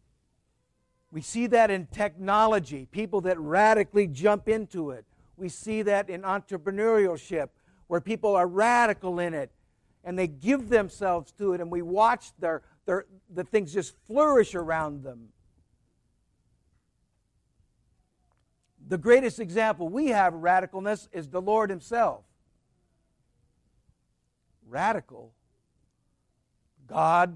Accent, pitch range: American, 150-205 Hz